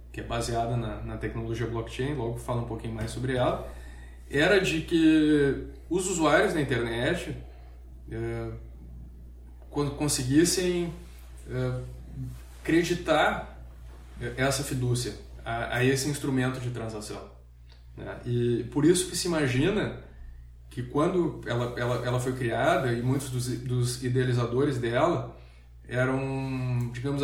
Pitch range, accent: 110-140 Hz, Brazilian